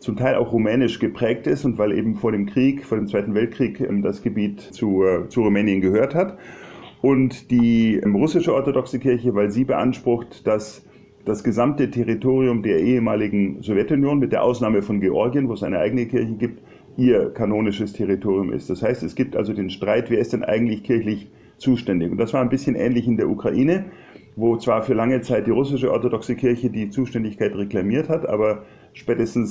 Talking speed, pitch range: 185 wpm, 105-125 Hz